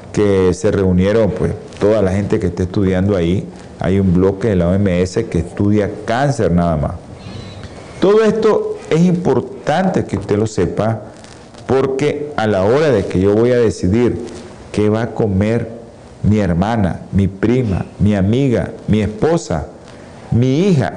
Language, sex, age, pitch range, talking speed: Spanish, male, 50-69, 100-145 Hz, 155 wpm